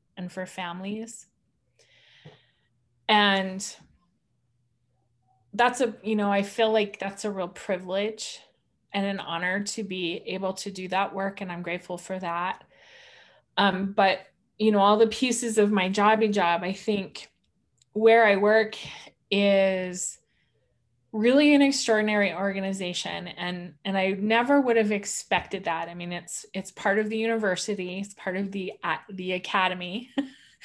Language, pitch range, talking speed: English, 180-220 Hz, 145 wpm